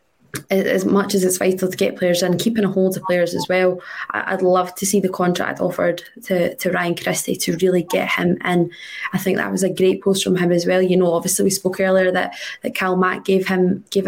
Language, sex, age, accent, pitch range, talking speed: English, female, 20-39, British, 185-205 Hz, 240 wpm